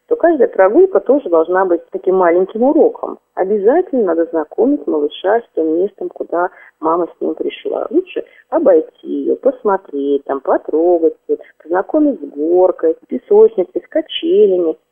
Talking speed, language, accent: 135 wpm, Russian, native